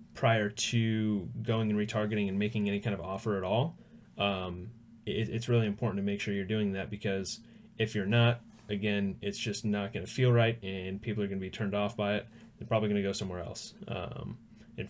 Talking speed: 220 wpm